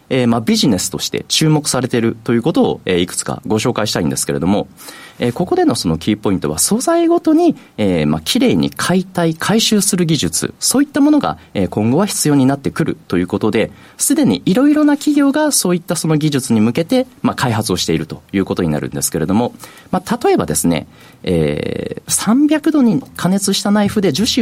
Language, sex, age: Japanese, male, 40-59